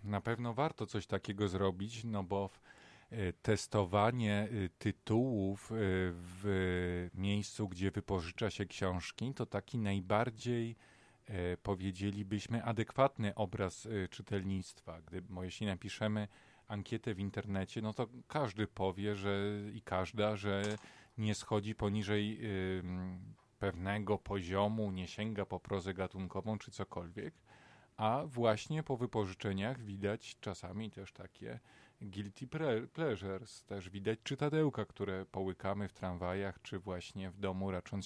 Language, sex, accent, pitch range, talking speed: Polish, male, native, 100-115 Hz, 110 wpm